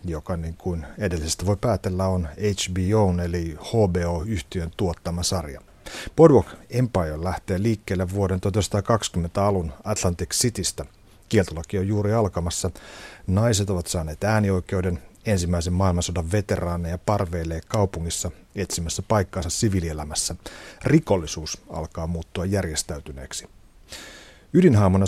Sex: male